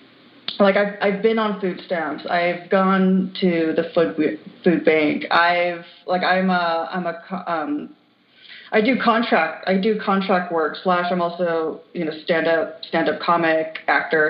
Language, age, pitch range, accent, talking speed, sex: English, 30-49, 170-195 Hz, American, 165 wpm, female